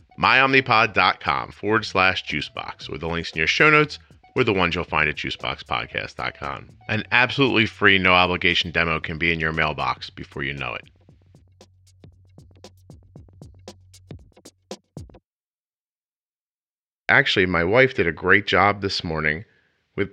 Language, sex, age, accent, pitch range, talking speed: English, male, 40-59, American, 85-110 Hz, 130 wpm